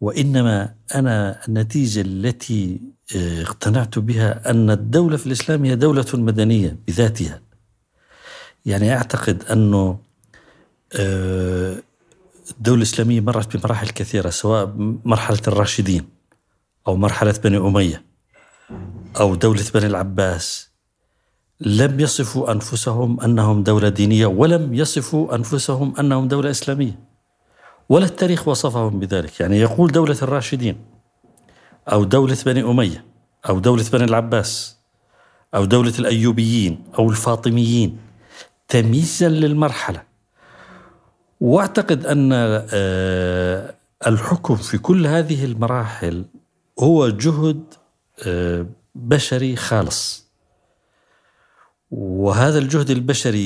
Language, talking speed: Arabic, 90 wpm